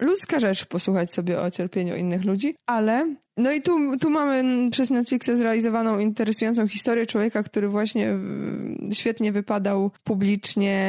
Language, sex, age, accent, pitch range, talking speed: Polish, female, 20-39, native, 195-245 Hz, 140 wpm